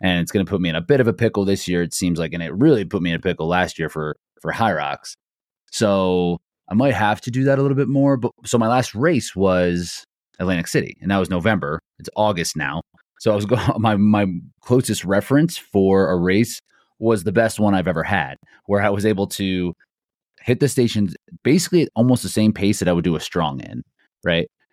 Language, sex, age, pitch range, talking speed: English, male, 30-49, 90-120 Hz, 235 wpm